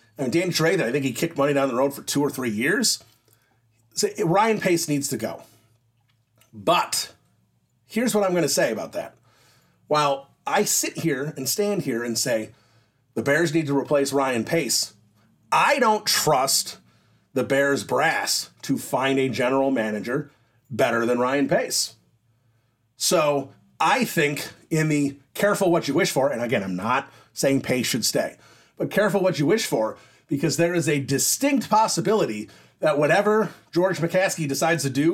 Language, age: English, 40-59